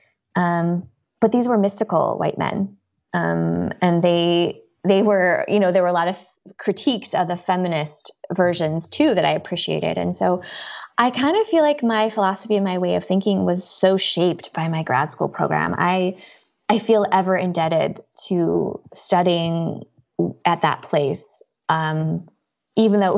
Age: 20-39